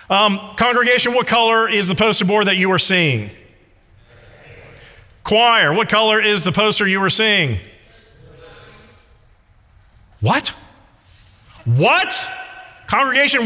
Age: 40-59